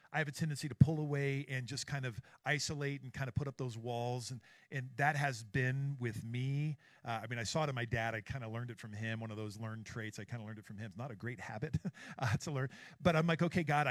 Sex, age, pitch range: male, 50-69, 110-140 Hz